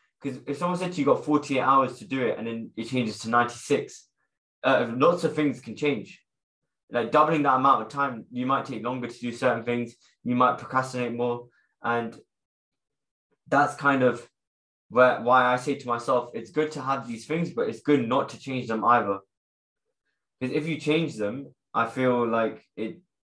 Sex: male